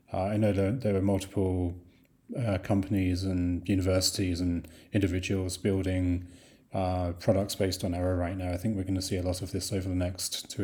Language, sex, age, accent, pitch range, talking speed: English, male, 30-49, British, 90-105 Hz, 190 wpm